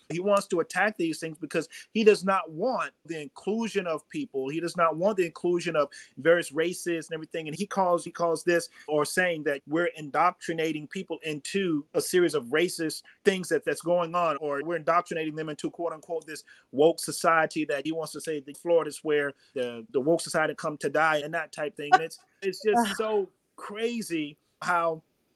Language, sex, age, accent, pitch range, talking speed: English, male, 30-49, American, 160-210 Hz, 200 wpm